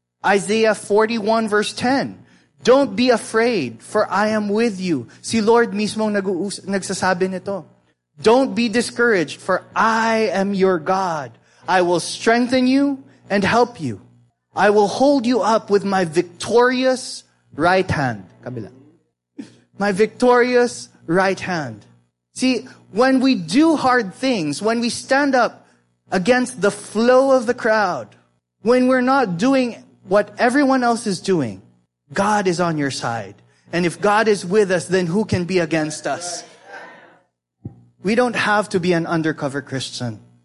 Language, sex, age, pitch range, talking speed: English, male, 20-39, 140-225 Hz, 145 wpm